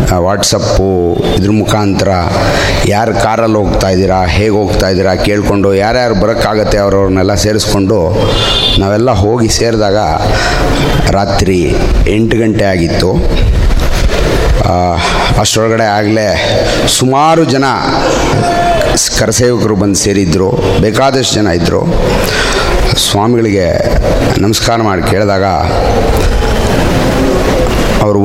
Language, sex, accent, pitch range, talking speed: Kannada, male, native, 100-120 Hz, 75 wpm